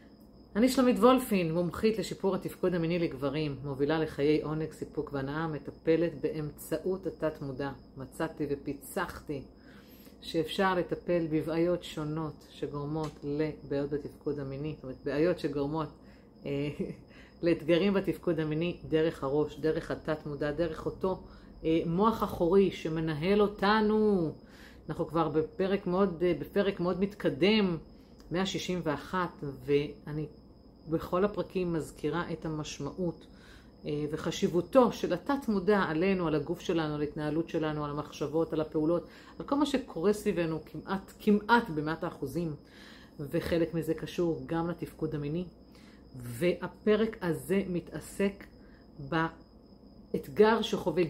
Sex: female